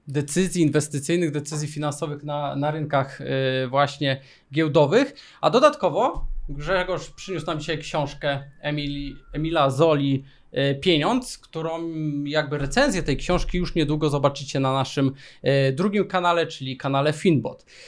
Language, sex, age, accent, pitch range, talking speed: Polish, male, 20-39, native, 140-180 Hz, 115 wpm